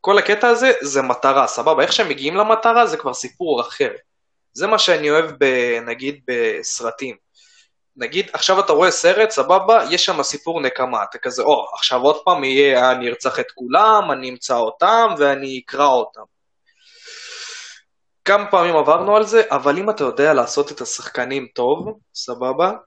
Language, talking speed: Hebrew, 165 wpm